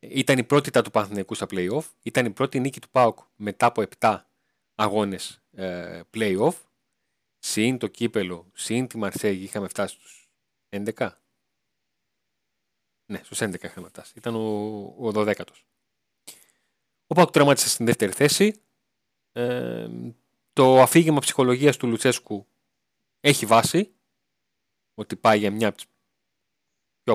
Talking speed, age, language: 130 wpm, 30-49, Greek